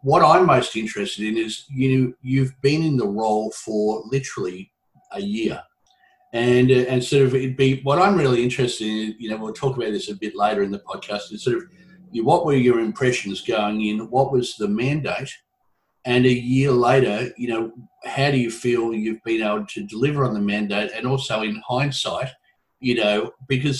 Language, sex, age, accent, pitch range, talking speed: English, male, 50-69, Australian, 105-140 Hz, 200 wpm